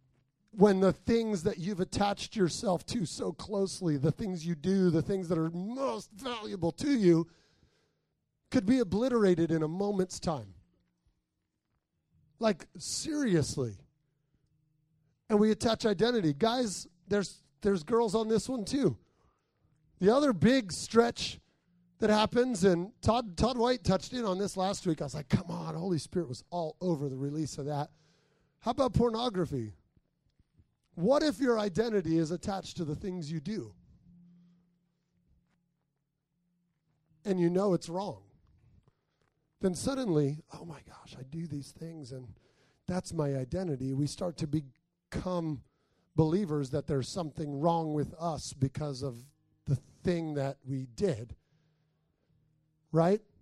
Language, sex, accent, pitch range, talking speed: English, male, American, 150-200 Hz, 140 wpm